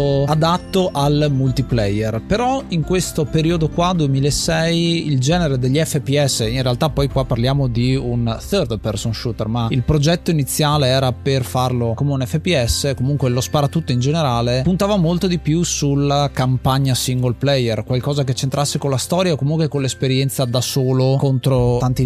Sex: male